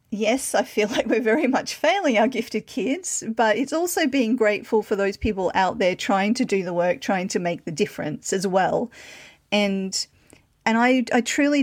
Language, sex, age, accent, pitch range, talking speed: English, female, 40-59, Australian, 190-235 Hz, 195 wpm